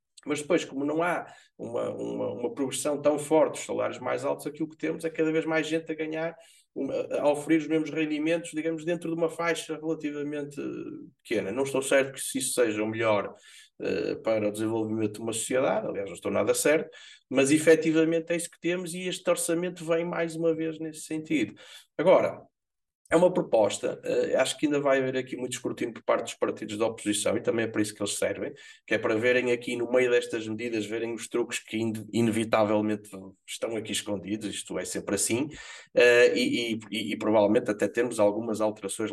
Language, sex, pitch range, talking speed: Portuguese, male, 110-160 Hz, 200 wpm